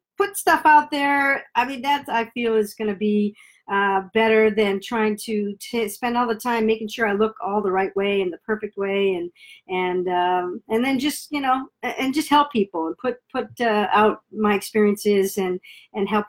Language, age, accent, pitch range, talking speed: English, 50-69, American, 200-255 Hz, 210 wpm